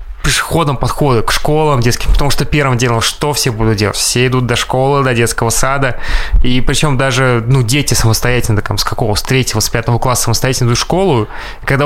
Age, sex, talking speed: 20-39, male, 200 wpm